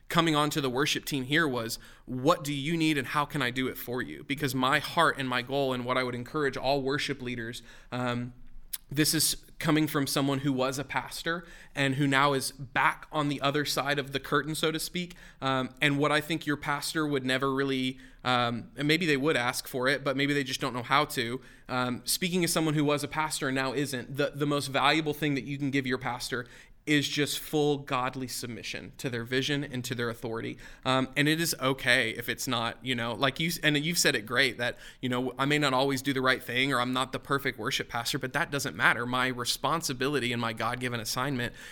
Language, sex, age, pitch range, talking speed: English, male, 20-39, 125-145 Hz, 235 wpm